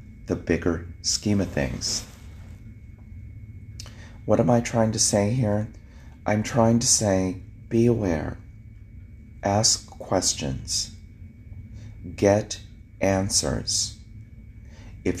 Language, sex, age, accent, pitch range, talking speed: English, male, 40-59, American, 90-110 Hz, 90 wpm